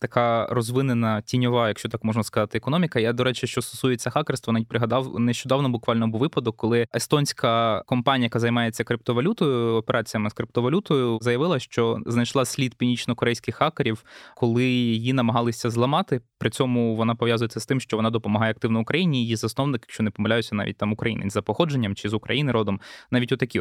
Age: 20-39